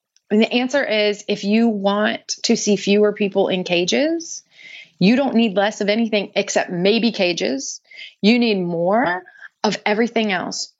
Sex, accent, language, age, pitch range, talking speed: female, American, English, 30-49, 190-245 Hz, 155 wpm